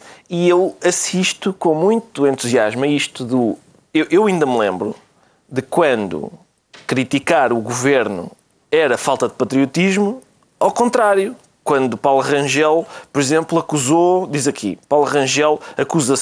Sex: male